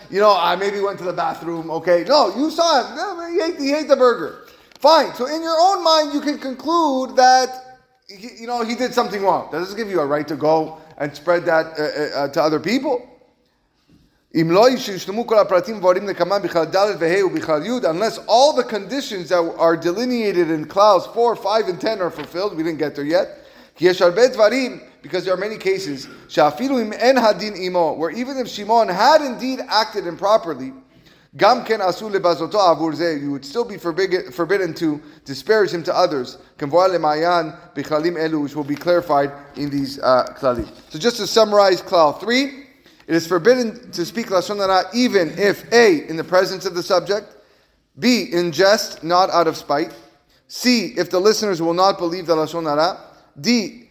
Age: 30-49